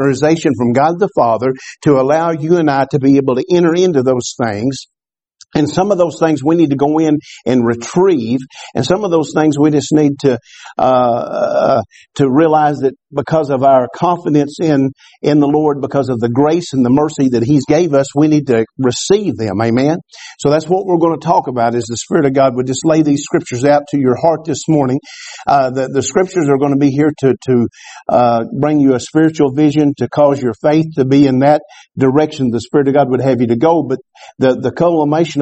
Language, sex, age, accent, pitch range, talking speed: English, male, 50-69, American, 130-160 Hz, 225 wpm